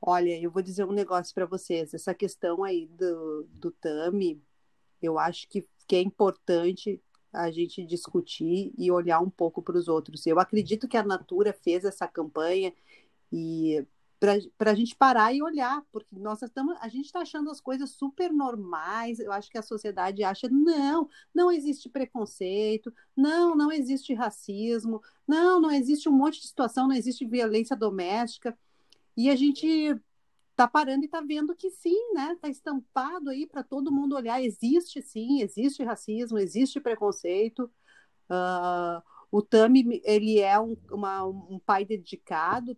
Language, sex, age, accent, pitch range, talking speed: Portuguese, female, 40-59, Brazilian, 185-270 Hz, 160 wpm